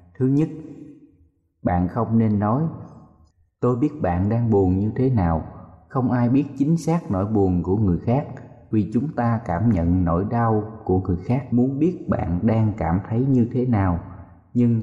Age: 20-39